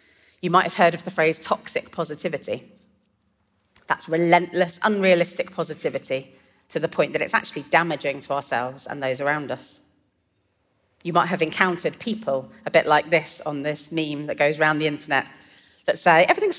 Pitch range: 140-185 Hz